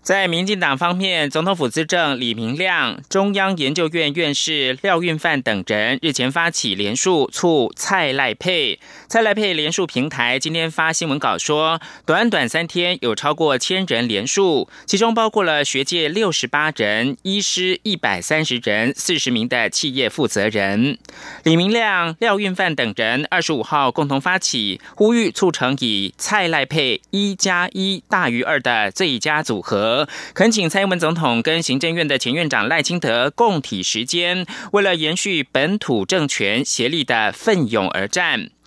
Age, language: 20-39, German